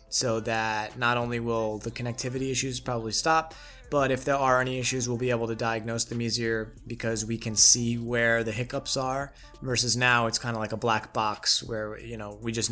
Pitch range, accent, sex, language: 115-135 Hz, American, male, English